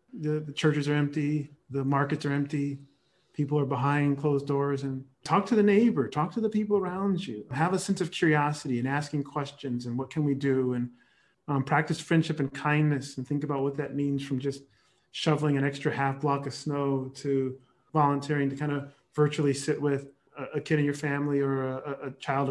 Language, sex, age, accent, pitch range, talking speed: English, male, 30-49, American, 135-155 Hz, 205 wpm